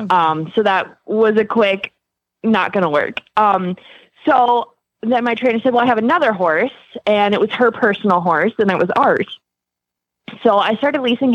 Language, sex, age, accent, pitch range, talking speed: English, female, 20-39, American, 180-235 Hz, 185 wpm